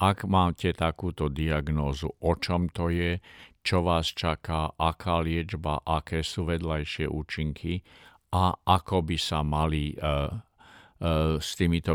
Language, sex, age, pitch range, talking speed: Slovak, male, 50-69, 75-95 Hz, 130 wpm